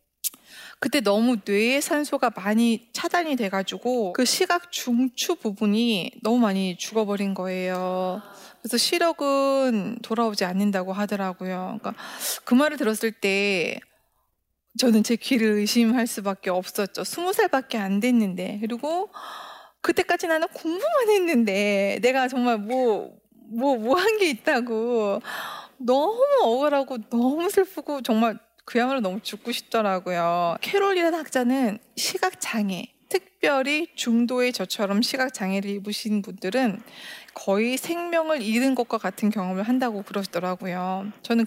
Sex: female